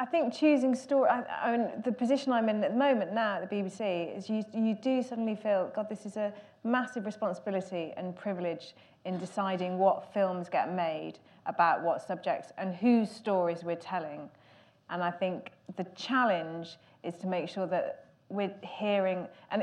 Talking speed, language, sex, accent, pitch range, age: 180 wpm, English, female, British, 180-215 Hz, 30-49